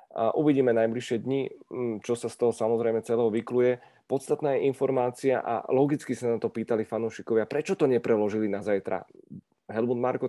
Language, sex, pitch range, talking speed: Czech, male, 110-125 Hz, 165 wpm